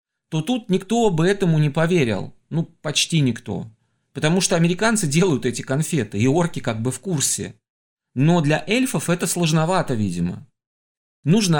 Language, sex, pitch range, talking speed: Russian, male, 130-180 Hz, 150 wpm